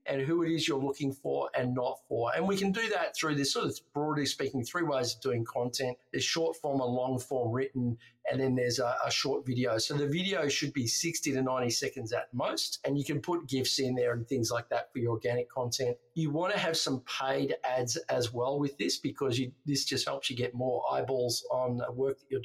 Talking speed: 245 wpm